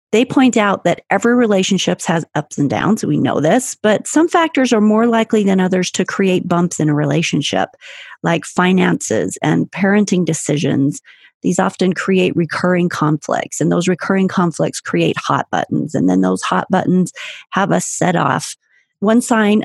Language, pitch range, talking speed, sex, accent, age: English, 165-195 Hz, 170 wpm, female, American, 40-59